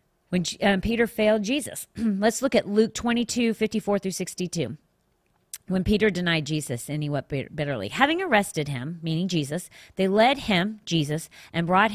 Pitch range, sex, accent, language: 160-230 Hz, female, American, English